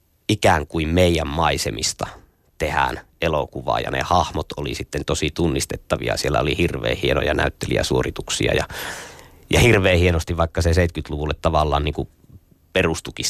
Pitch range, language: 75-85 Hz, Finnish